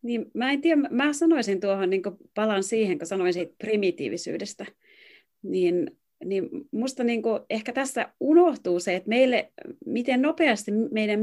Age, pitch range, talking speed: 30-49, 185-260 Hz, 145 wpm